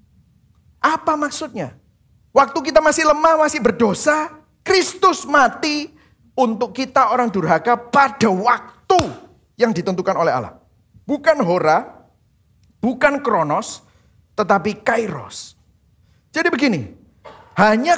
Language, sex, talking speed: Indonesian, male, 95 wpm